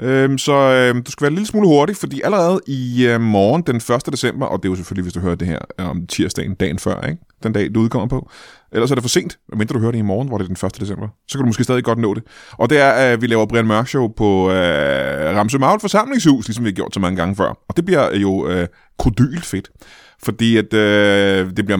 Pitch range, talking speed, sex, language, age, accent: 105-140 Hz, 265 wpm, male, Danish, 20-39, native